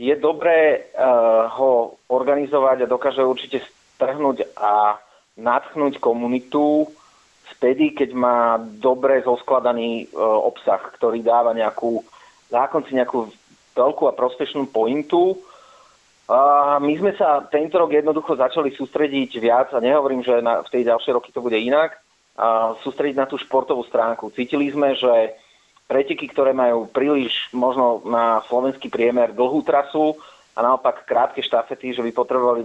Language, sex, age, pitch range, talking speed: Slovak, male, 30-49, 115-145 Hz, 140 wpm